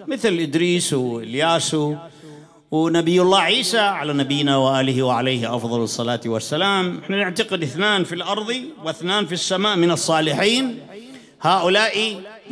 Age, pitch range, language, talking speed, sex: 50-69, 150-220 Hz, English, 115 wpm, male